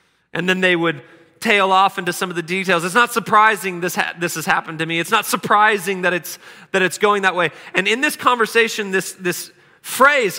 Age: 30-49